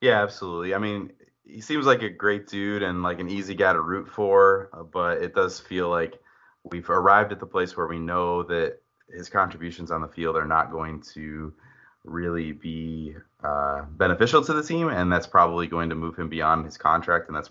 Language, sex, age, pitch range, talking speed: English, male, 30-49, 85-110 Hz, 205 wpm